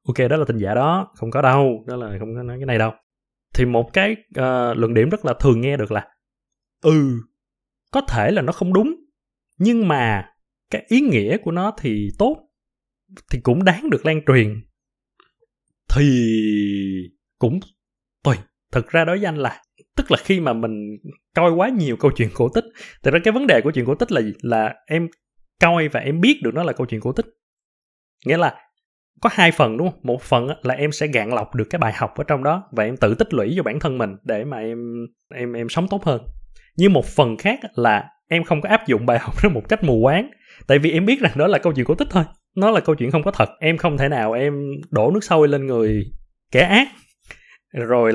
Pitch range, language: 120-180 Hz, Vietnamese